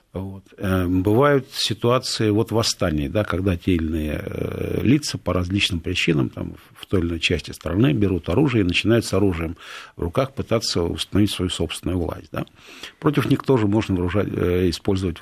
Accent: native